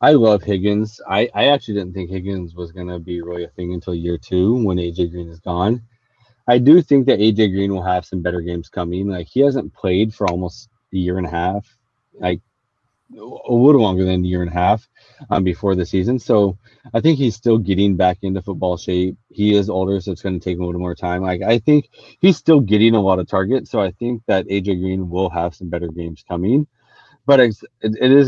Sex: male